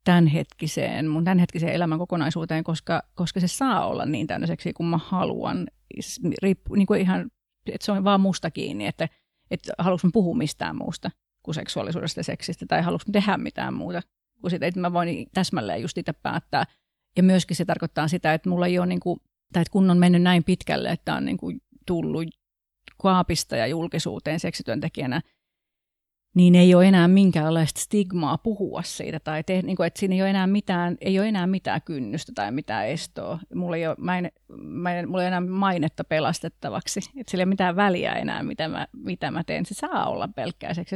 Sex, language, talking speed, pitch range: female, Finnish, 190 wpm, 170-205 Hz